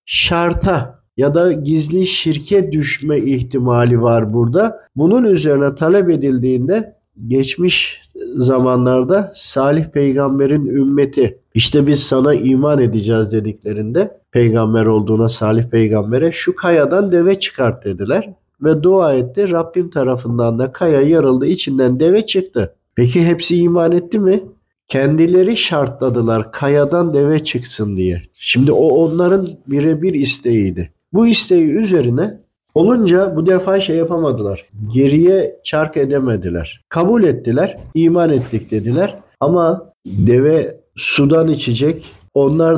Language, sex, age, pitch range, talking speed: Turkish, male, 50-69, 125-175 Hz, 115 wpm